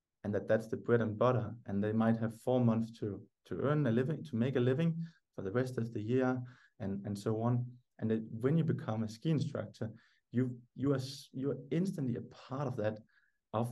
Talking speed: 225 wpm